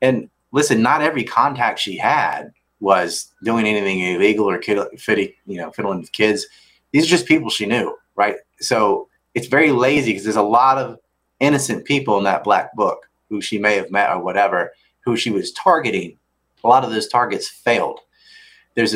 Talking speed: 175 wpm